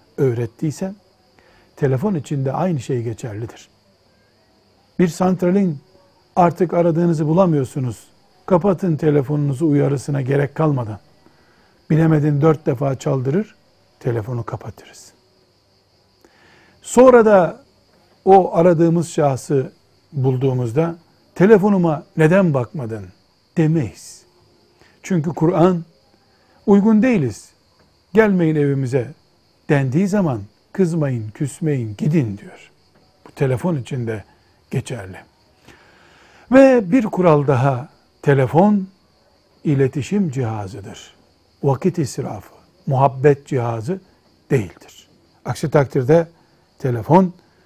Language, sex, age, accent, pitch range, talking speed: Turkish, male, 60-79, native, 120-170 Hz, 80 wpm